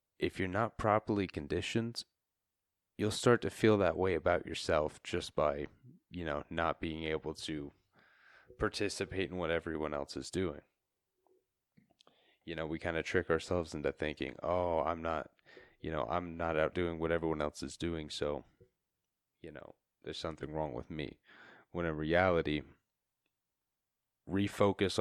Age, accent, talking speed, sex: 30-49, American, 150 wpm, male